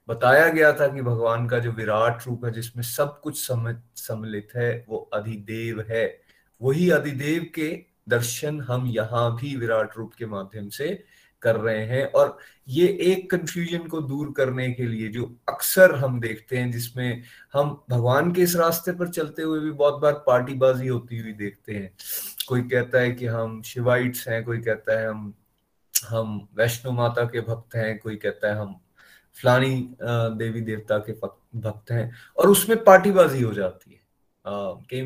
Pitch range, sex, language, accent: 115-145 Hz, male, Hindi, native